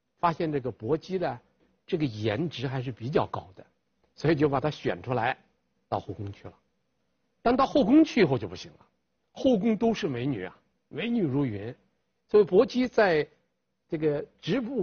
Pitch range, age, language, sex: 130-210 Hz, 50-69, Chinese, male